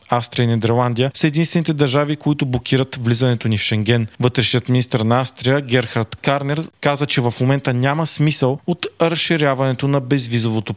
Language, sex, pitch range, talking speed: Bulgarian, male, 125-150 Hz, 155 wpm